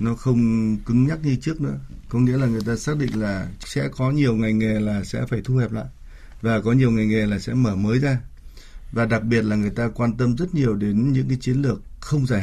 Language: Vietnamese